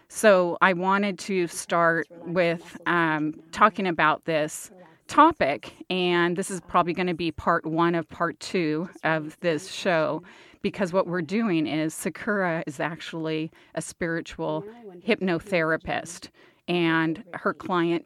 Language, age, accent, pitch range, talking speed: English, 30-49, American, 160-180 Hz, 135 wpm